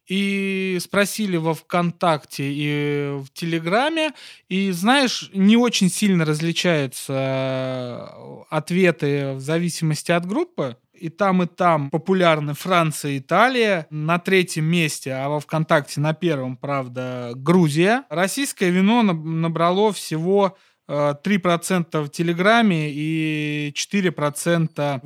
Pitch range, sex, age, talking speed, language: 150-195 Hz, male, 20-39, 110 wpm, Russian